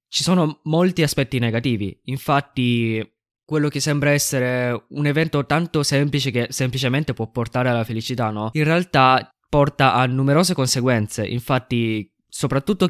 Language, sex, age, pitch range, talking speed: Italian, male, 20-39, 115-135 Hz, 135 wpm